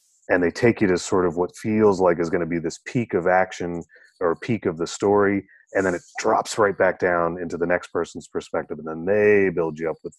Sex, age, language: male, 30-49, English